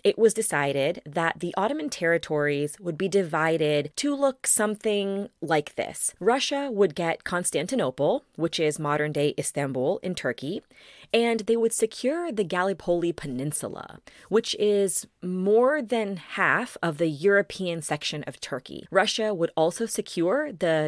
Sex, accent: female, American